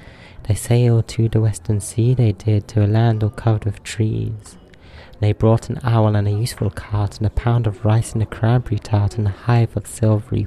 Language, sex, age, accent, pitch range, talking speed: English, male, 30-49, British, 105-115 Hz, 210 wpm